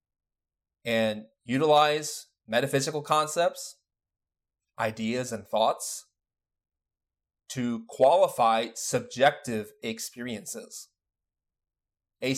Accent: American